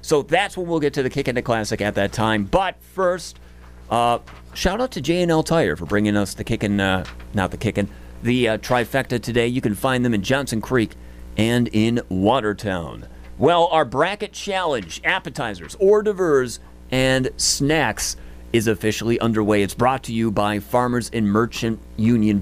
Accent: American